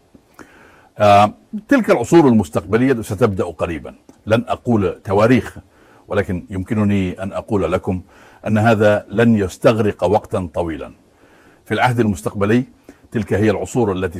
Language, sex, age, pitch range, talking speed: Dutch, male, 60-79, 95-120 Hz, 110 wpm